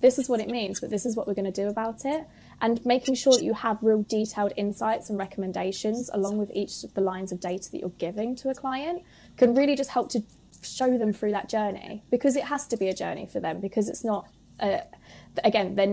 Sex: female